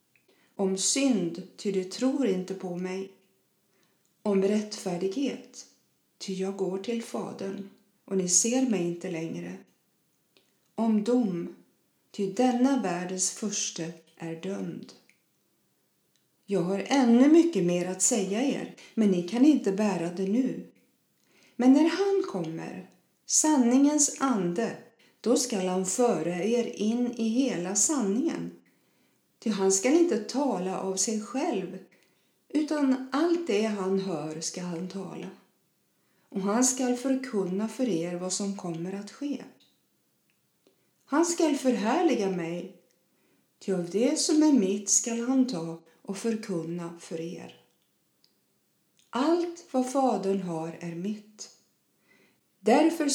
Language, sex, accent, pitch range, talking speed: Swedish, female, native, 185-255 Hz, 120 wpm